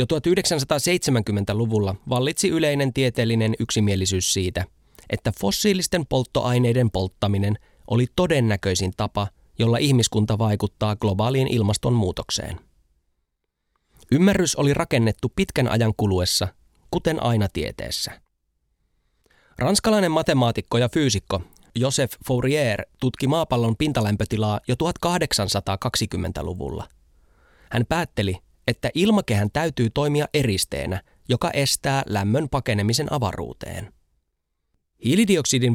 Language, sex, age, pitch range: Finnish, male, 20-39, 100-140 Hz